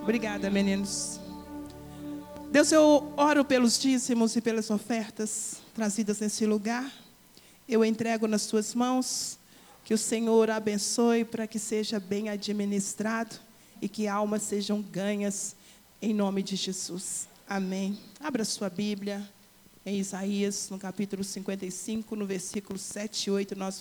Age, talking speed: 40-59, 130 wpm